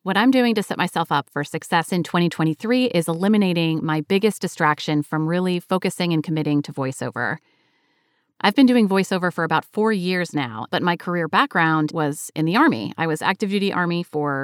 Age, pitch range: 30-49, 155-190 Hz